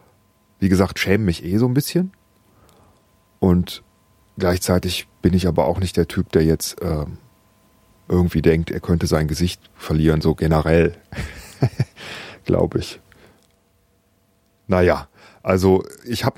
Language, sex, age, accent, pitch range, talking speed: German, male, 40-59, German, 90-110 Hz, 130 wpm